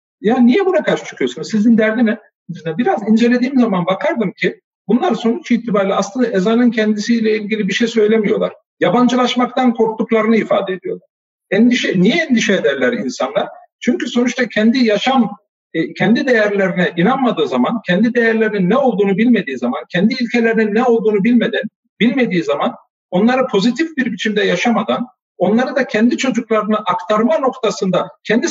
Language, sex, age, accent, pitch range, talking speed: Turkish, male, 50-69, native, 210-245 Hz, 135 wpm